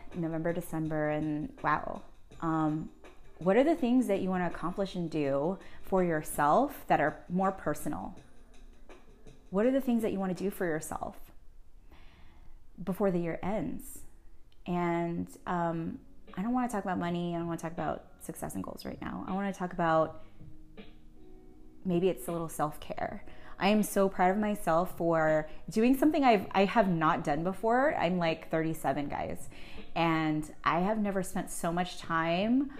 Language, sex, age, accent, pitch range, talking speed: English, female, 20-39, American, 165-200 Hz, 175 wpm